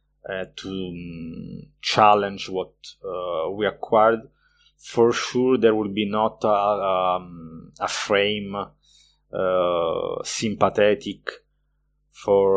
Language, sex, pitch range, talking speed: Portuguese, male, 90-110 Hz, 100 wpm